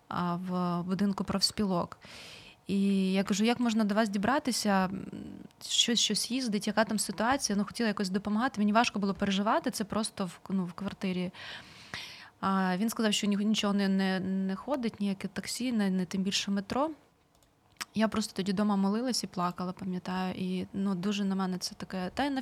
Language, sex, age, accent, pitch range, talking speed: Ukrainian, female, 20-39, native, 190-215 Hz, 175 wpm